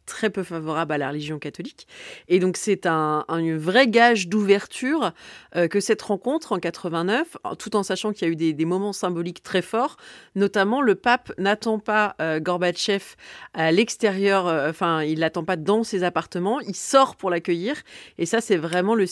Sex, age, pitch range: female, 30-49, 170-215 Hz